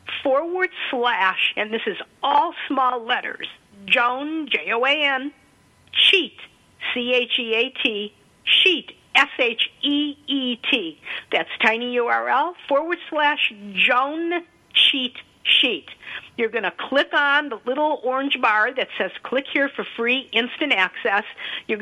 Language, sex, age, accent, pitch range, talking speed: English, female, 50-69, American, 230-300 Hz, 140 wpm